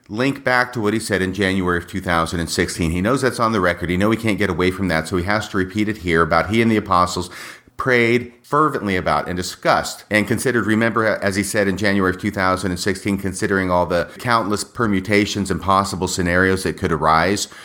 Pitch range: 90-115 Hz